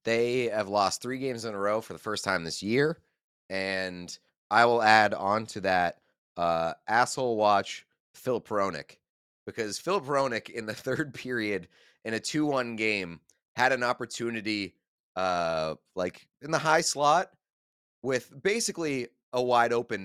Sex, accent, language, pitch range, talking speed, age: male, American, English, 105-135 Hz, 155 wpm, 30-49